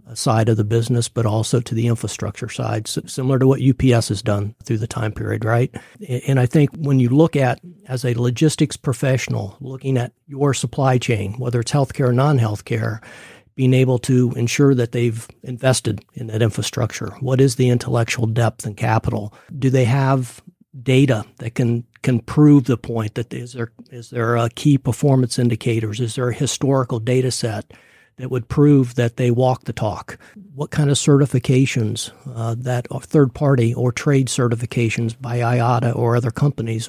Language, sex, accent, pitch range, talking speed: English, male, American, 115-135 Hz, 175 wpm